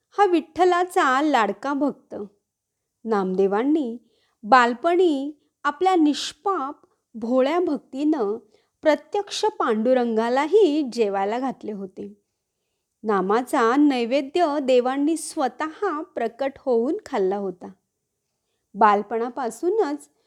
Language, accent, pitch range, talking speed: Marathi, native, 230-340 Hz, 70 wpm